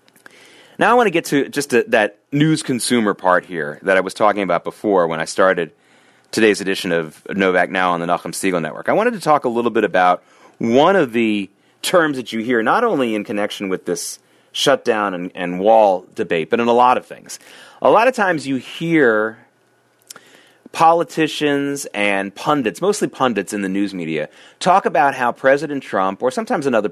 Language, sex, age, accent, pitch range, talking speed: English, male, 30-49, American, 105-150 Hz, 190 wpm